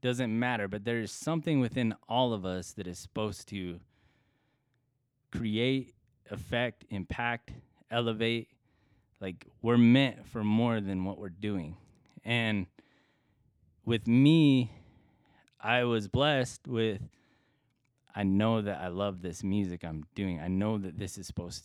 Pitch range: 95-125 Hz